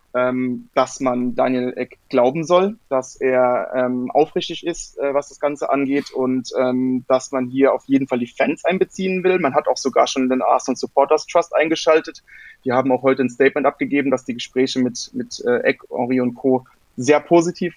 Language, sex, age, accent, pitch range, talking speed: German, male, 20-39, German, 130-155 Hz, 190 wpm